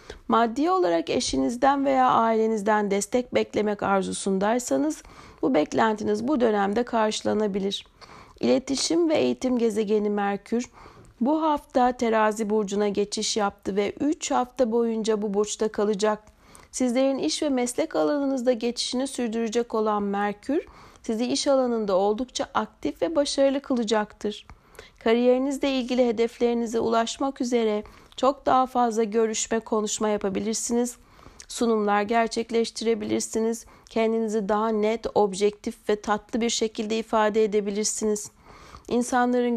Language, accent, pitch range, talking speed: Turkish, native, 210-255 Hz, 110 wpm